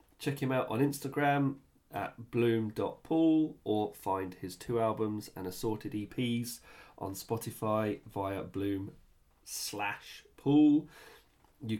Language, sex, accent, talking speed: English, male, British, 110 wpm